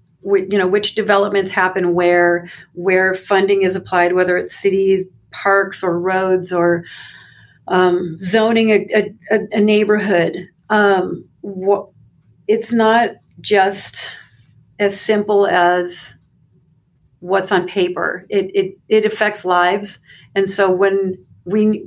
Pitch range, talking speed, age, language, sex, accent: 175-200 Hz, 120 wpm, 40-59, English, female, American